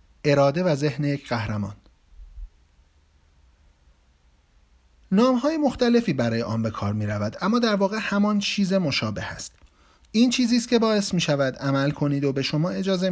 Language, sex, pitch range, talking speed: Persian, male, 115-175 Hz, 155 wpm